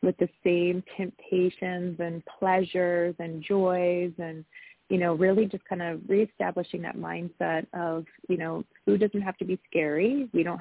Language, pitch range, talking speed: English, 165-195 Hz, 165 wpm